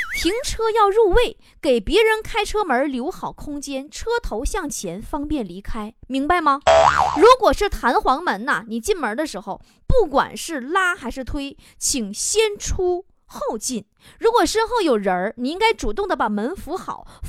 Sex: female